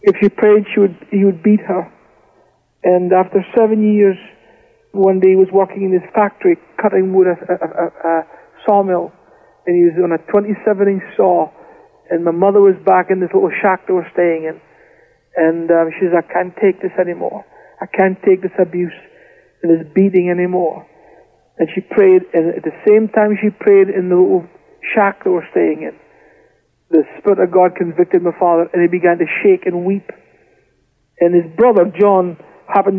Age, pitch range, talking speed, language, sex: 60-79, 175-210 Hz, 180 wpm, English, male